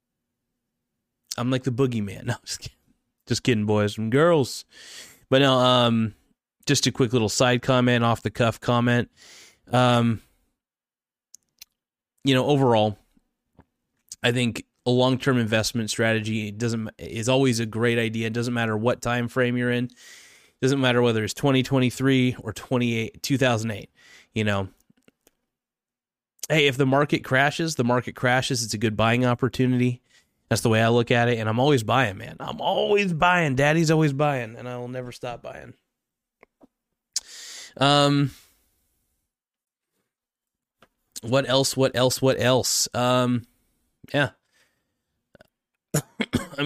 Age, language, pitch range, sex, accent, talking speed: 20-39, English, 115-130 Hz, male, American, 145 wpm